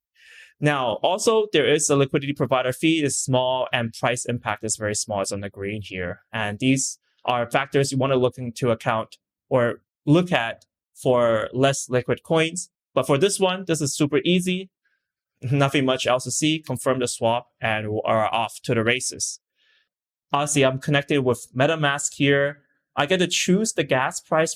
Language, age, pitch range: English, 20-39, 115-145 Hz